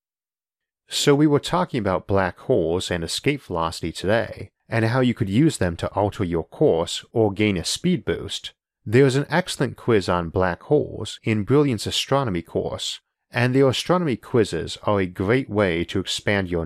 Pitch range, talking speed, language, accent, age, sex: 90-120 Hz, 175 wpm, English, American, 40-59, male